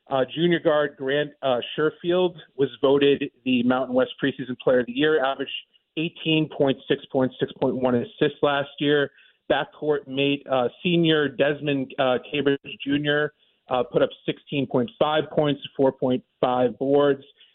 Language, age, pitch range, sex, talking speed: English, 30-49, 135-160 Hz, male, 125 wpm